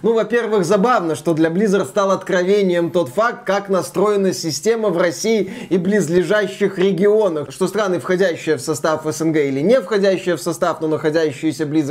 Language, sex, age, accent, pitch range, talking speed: Russian, male, 20-39, native, 190-230 Hz, 160 wpm